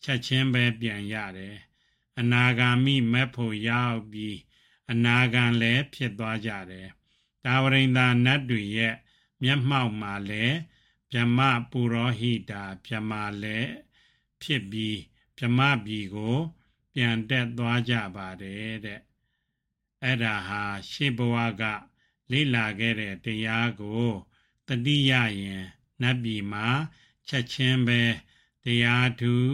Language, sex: English, male